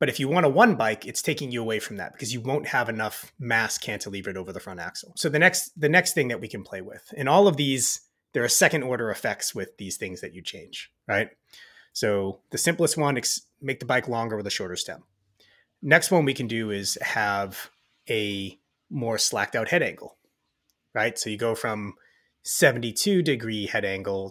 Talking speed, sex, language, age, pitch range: 210 wpm, male, English, 30-49, 110-160 Hz